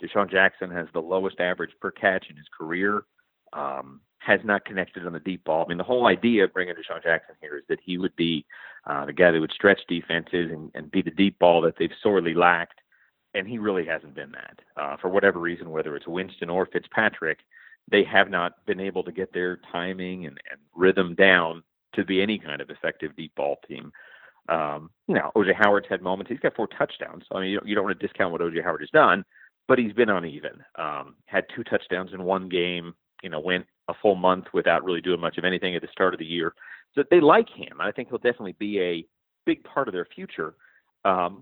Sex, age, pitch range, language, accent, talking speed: male, 40-59, 85-110 Hz, English, American, 230 wpm